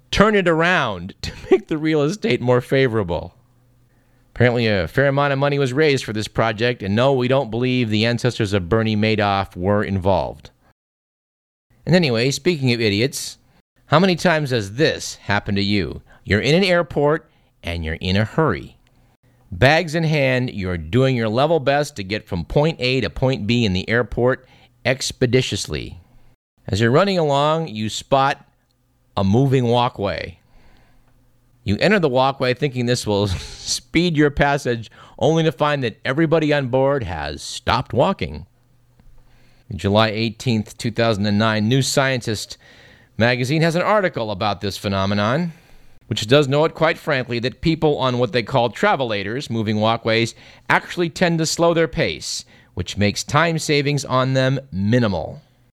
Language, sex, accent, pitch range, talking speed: English, male, American, 110-140 Hz, 155 wpm